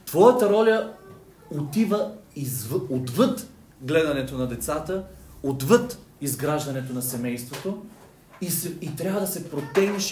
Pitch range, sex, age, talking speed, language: 125-185 Hz, male, 40-59, 115 wpm, Bulgarian